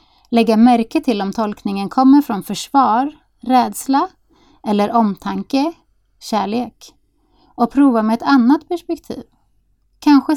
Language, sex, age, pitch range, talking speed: Swedish, female, 30-49, 215-265 Hz, 110 wpm